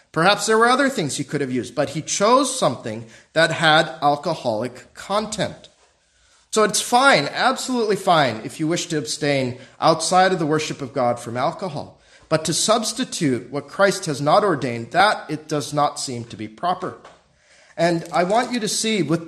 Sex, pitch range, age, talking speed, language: male, 140-205 Hz, 40-59, 180 wpm, English